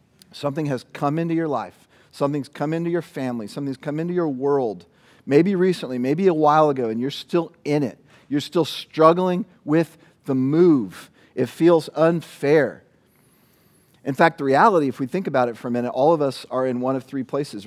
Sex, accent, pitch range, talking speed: male, American, 135-165 Hz, 195 wpm